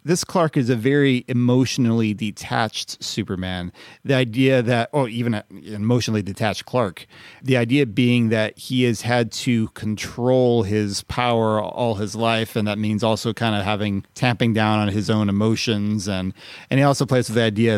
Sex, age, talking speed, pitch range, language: male, 30-49, 180 wpm, 105-130 Hz, English